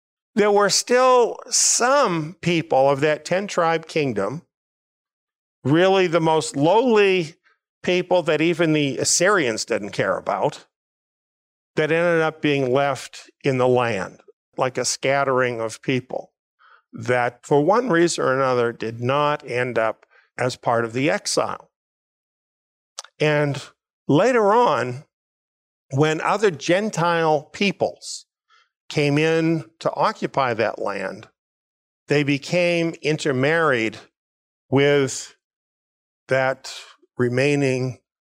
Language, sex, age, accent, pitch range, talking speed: English, male, 50-69, American, 125-170 Hz, 105 wpm